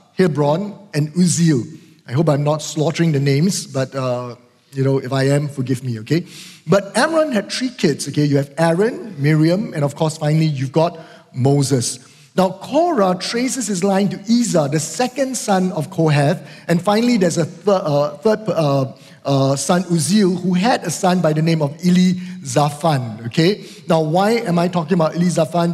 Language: English